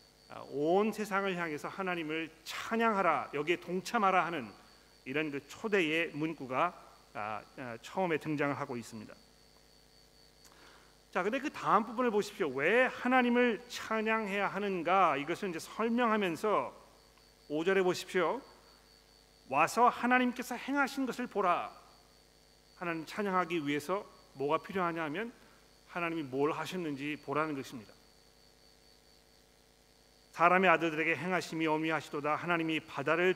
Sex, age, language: male, 40-59, Korean